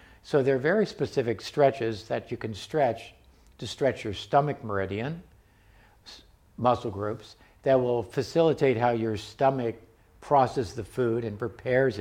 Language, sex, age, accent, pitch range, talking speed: English, male, 50-69, American, 110-135 Hz, 140 wpm